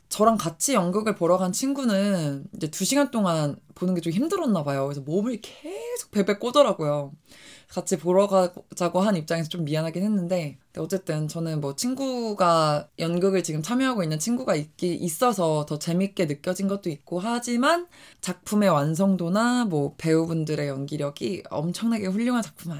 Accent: native